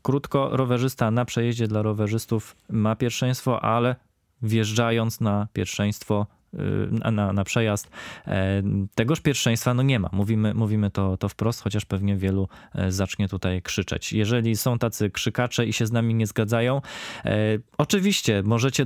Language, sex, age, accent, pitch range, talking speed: Polish, male, 20-39, native, 100-120 Hz, 140 wpm